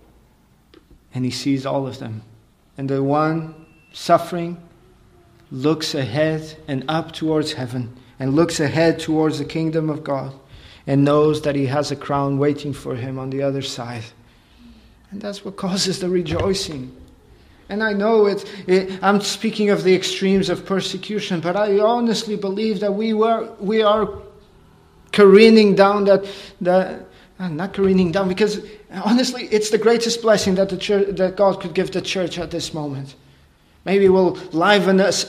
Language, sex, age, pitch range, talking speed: English, male, 40-59, 140-195 Hz, 160 wpm